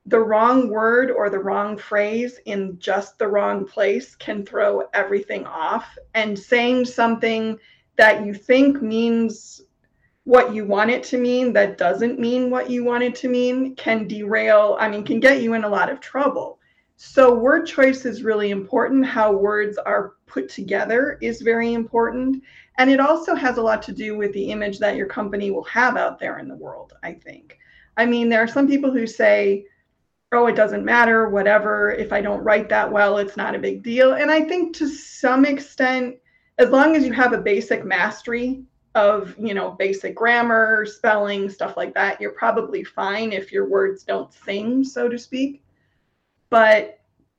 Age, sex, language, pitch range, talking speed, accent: 30-49, female, English, 205-255 Hz, 185 wpm, American